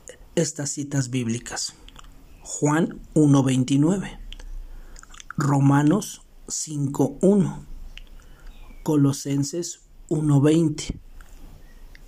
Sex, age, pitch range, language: male, 50-69, 130-155 Hz, Spanish